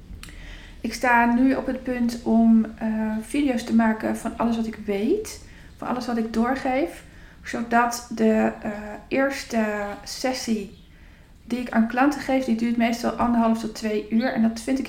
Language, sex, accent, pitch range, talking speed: Dutch, female, Dutch, 205-240 Hz, 170 wpm